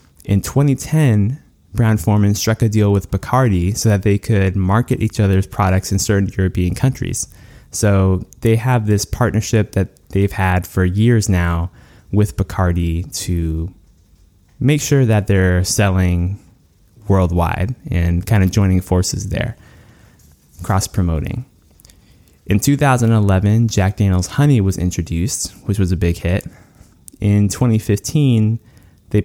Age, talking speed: 20-39, 125 wpm